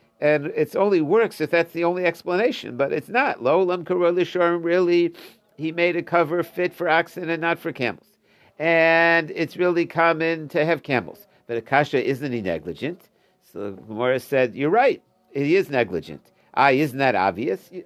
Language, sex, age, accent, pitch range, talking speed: English, male, 60-79, American, 150-185 Hz, 170 wpm